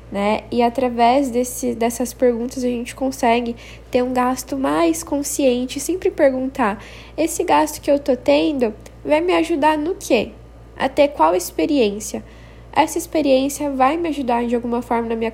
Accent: Brazilian